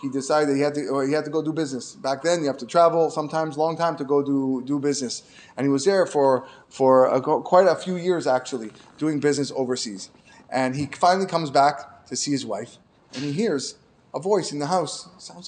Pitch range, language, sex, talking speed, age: 135-185 Hz, English, male, 230 wpm, 20-39